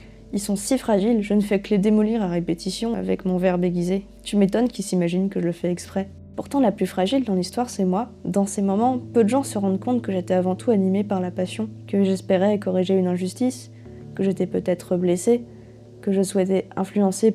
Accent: French